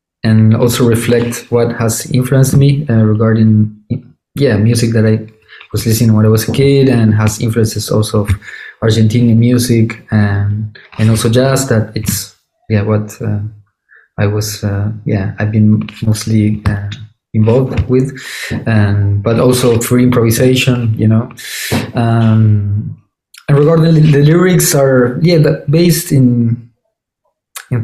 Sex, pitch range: male, 110-125 Hz